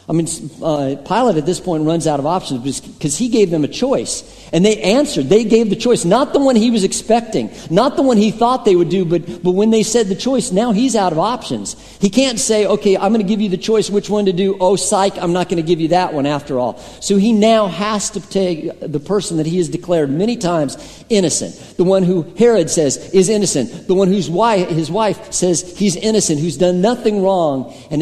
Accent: American